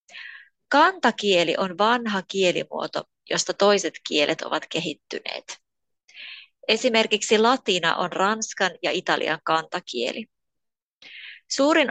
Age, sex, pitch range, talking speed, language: 20-39, female, 165-220 Hz, 85 wpm, Finnish